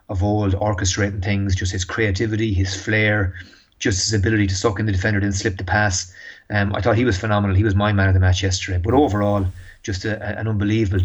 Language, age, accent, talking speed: English, 30-49, Irish, 230 wpm